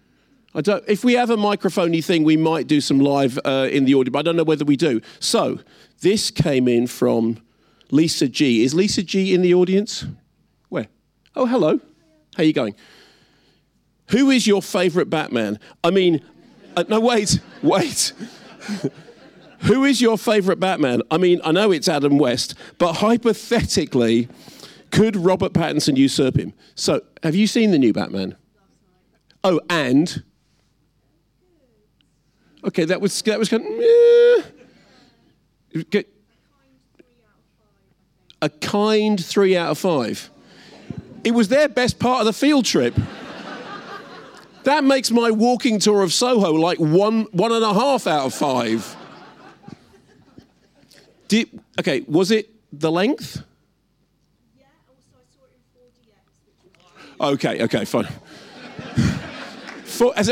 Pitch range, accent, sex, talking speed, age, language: 150-225 Hz, British, male, 145 wpm, 50-69, English